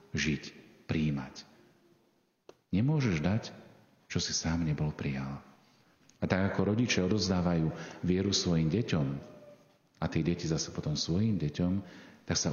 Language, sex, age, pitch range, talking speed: Slovak, male, 40-59, 85-110 Hz, 125 wpm